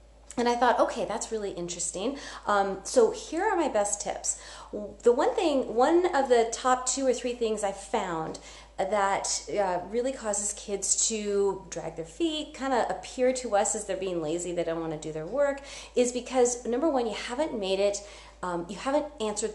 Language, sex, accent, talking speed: English, female, American, 195 wpm